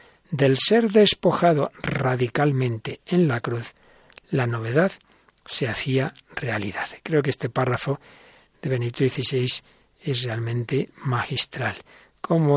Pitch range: 125-160 Hz